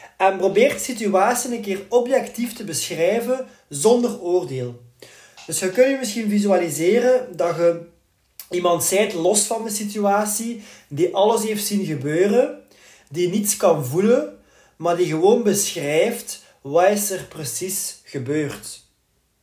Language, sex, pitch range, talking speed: Dutch, male, 160-210 Hz, 135 wpm